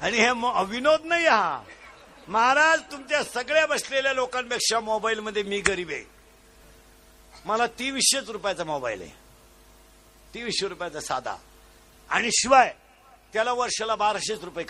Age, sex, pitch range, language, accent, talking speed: 60-79, male, 165-240 Hz, Marathi, native, 100 wpm